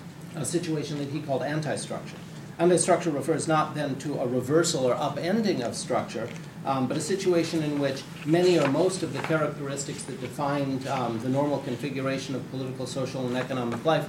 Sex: male